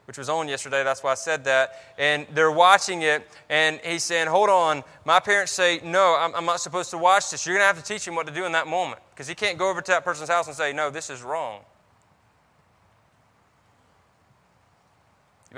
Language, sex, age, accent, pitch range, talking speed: English, male, 20-39, American, 130-160 Hz, 225 wpm